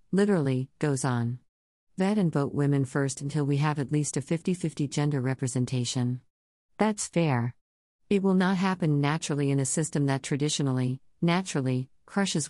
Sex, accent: female, American